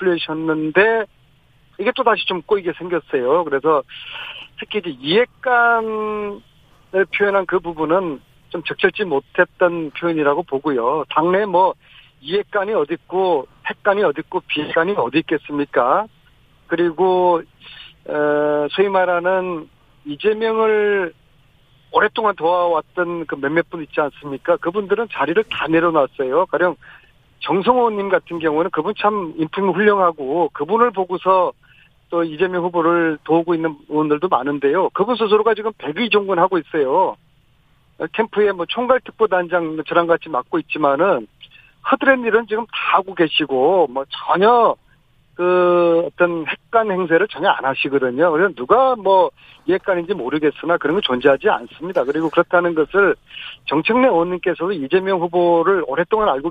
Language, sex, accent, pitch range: Korean, male, native, 150-205 Hz